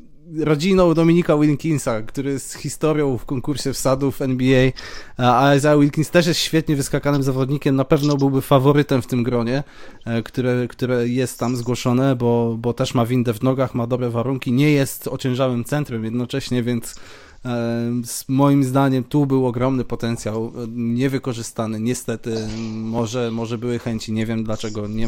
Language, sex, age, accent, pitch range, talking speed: Polish, male, 20-39, native, 115-135 Hz, 155 wpm